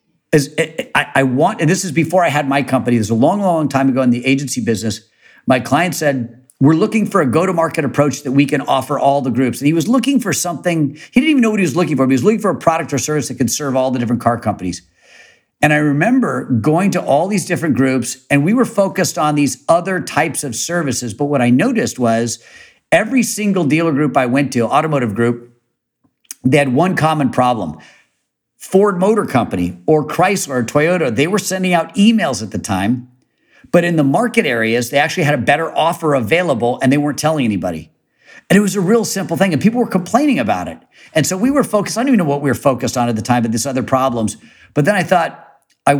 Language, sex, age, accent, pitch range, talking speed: English, male, 50-69, American, 125-180 Hz, 235 wpm